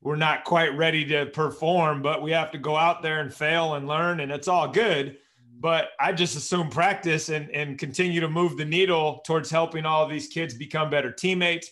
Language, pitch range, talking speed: English, 145-175 Hz, 210 wpm